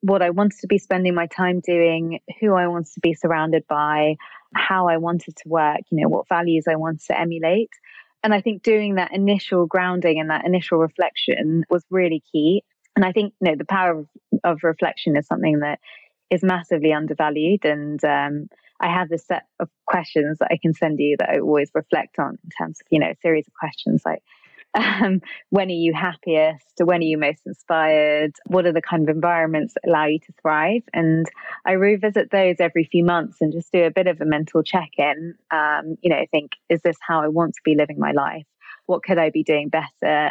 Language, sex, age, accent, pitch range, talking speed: English, female, 20-39, British, 155-185 Hz, 215 wpm